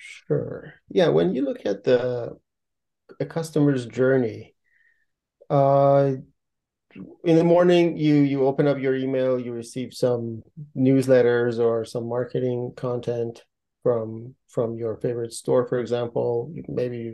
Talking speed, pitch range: 135 wpm, 125-145 Hz